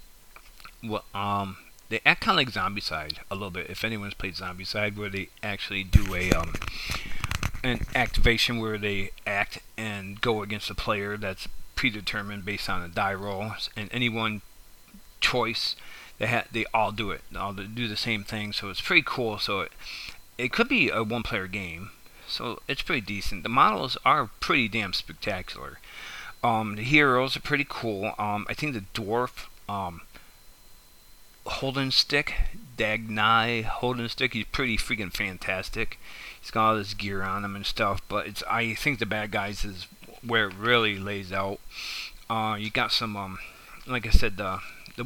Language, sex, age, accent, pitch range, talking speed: English, male, 40-59, American, 100-115 Hz, 175 wpm